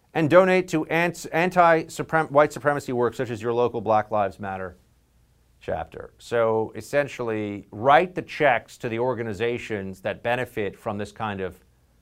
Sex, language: male, English